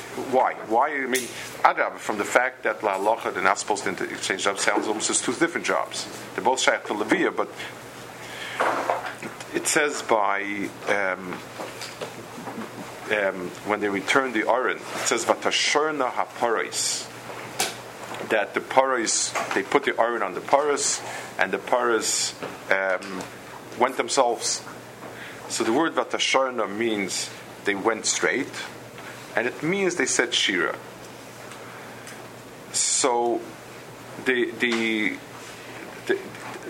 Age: 50-69